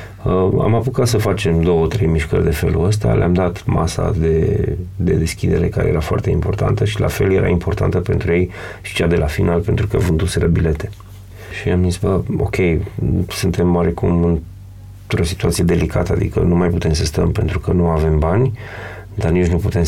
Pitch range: 85-100 Hz